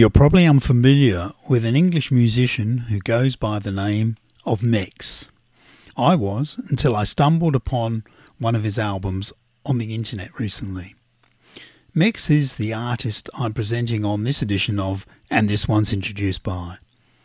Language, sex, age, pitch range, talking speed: English, male, 50-69, 105-130 Hz, 150 wpm